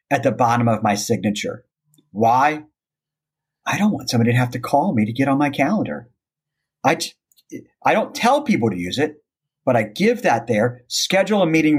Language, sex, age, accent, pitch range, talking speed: English, male, 40-59, American, 130-185 Hz, 190 wpm